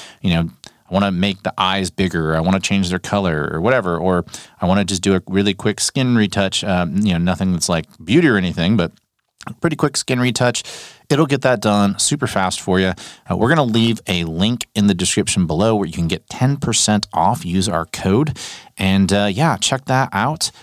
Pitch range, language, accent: 95-125 Hz, English, American